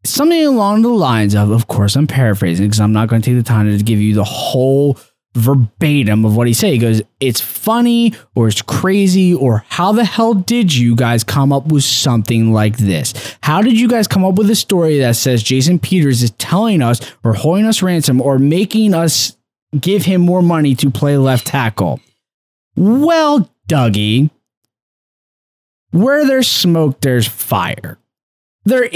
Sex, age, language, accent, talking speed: male, 20-39, English, American, 180 wpm